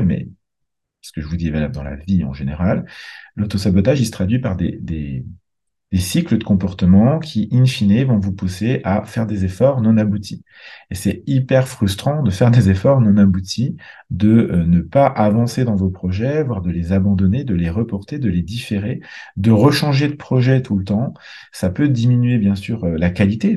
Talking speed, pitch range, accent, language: 195 wpm, 90-115 Hz, French, French